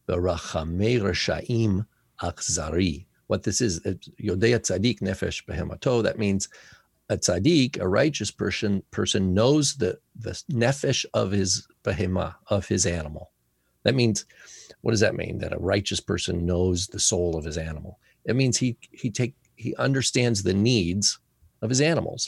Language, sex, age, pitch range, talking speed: English, male, 40-59, 90-110 Hz, 145 wpm